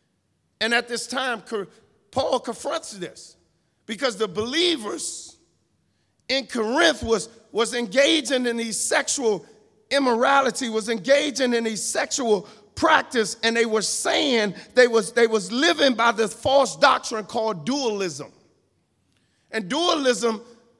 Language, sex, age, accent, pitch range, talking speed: English, male, 50-69, American, 215-265 Hz, 120 wpm